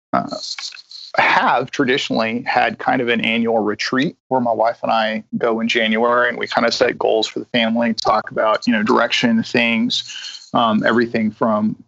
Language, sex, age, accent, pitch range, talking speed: English, male, 40-59, American, 115-135 Hz, 175 wpm